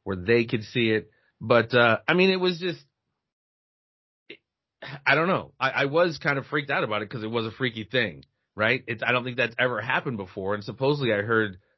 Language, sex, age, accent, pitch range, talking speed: English, male, 30-49, American, 110-160 Hz, 215 wpm